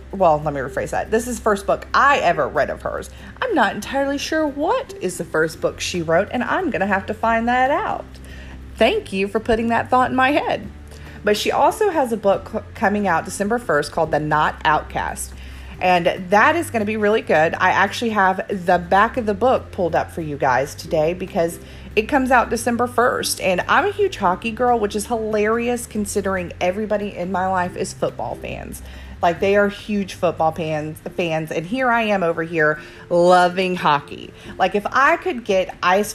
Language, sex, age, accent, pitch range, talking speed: English, female, 30-49, American, 170-235 Hz, 205 wpm